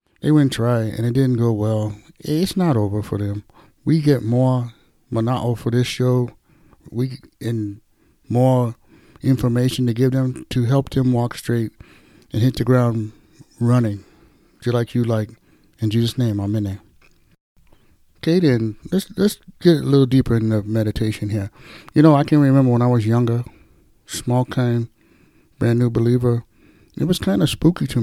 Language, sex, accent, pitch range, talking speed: English, male, American, 110-135 Hz, 170 wpm